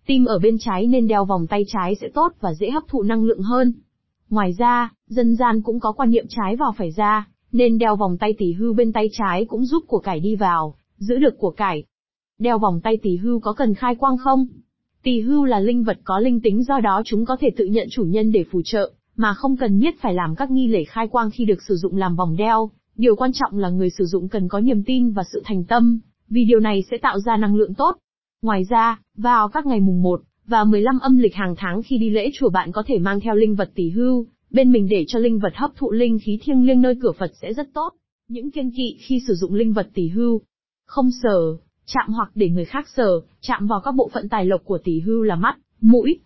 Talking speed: 255 wpm